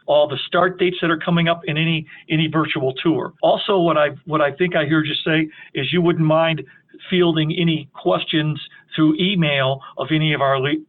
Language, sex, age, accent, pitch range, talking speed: English, male, 50-69, American, 145-170 Hz, 200 wpm